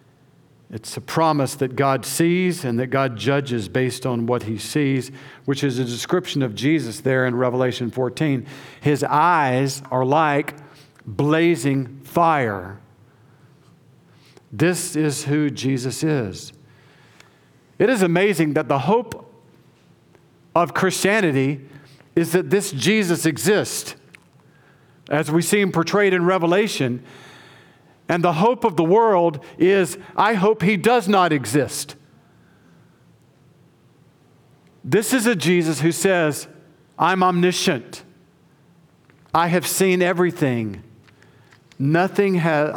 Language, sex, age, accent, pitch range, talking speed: English, male, 50-69, American, 135-175 Hz, 115 wpm